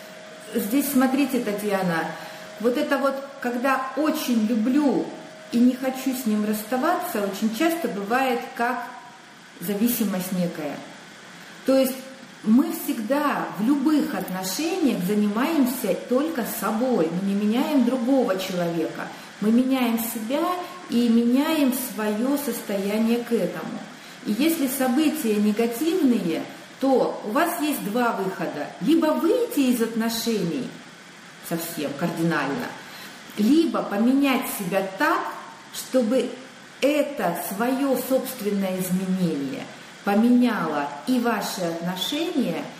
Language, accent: Russian, native